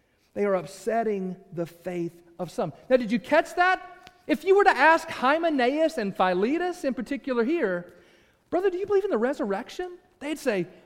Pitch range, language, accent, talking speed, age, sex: 155-210 Hz, English, American, 175 wpm, 40-59, male